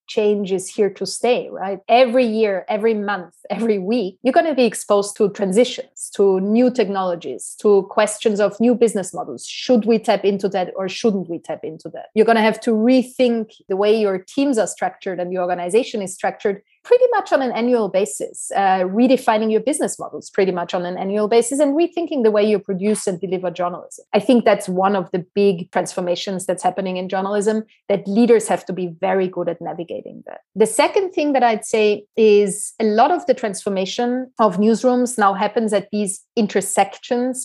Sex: female